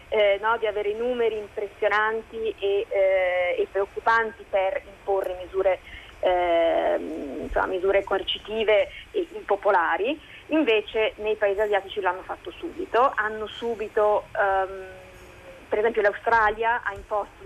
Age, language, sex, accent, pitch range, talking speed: 20-39, Italian, female, native, 195-250 Hz, 115 wpm